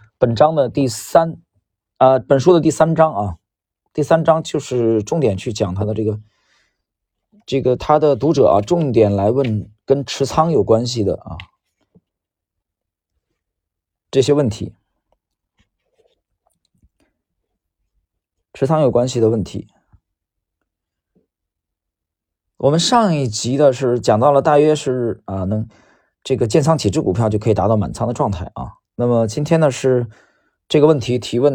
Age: 40-59